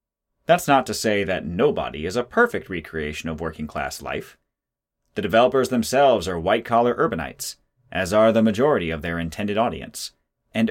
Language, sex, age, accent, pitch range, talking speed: English, male, 30-49, American, 85-120 Hz, 155 wpm